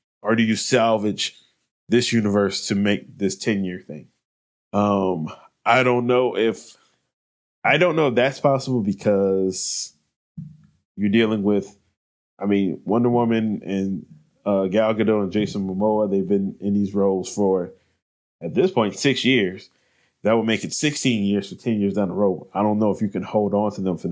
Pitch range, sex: 95-115 Hz, male